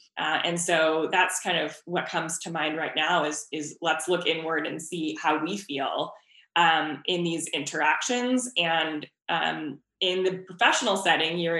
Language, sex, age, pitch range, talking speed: English, female, 20-39, 160-190 Hz, 165 wpm